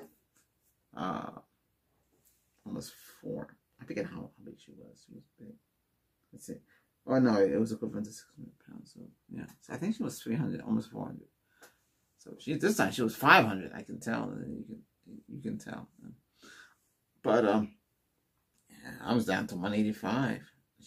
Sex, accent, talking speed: male, American, 160 wpm